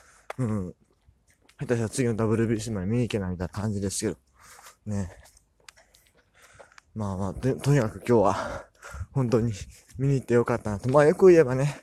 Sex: male